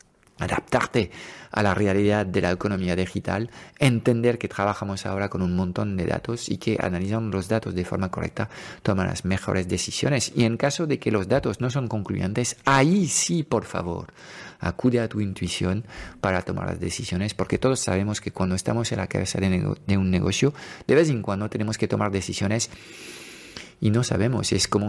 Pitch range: 95-115 Hz